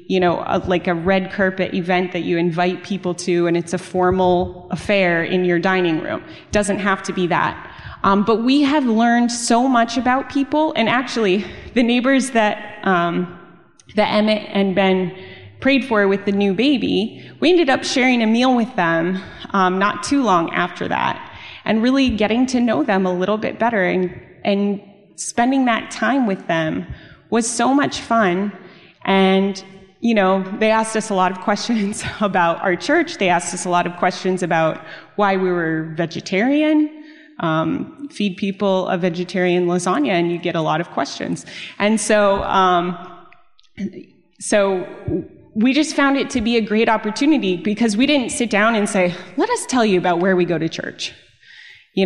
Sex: female